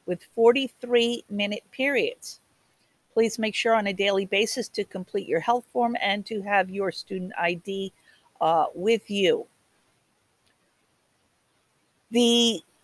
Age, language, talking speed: 50-69, English, 120 wpm